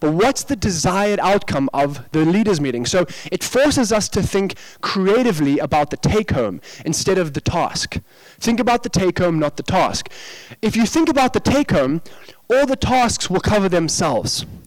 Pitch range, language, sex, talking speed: 170-220 Hz, English, male, 170 wpm